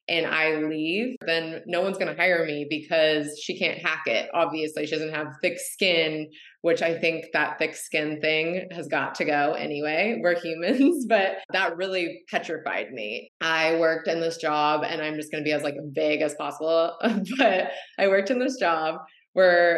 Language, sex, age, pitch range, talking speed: English, female, 20-39, 150-175 Hz, 190 wpm